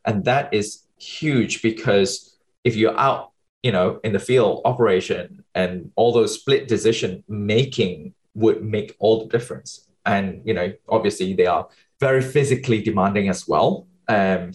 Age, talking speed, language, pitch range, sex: 20-39, 155 wpm, English, 100-170 Hz, male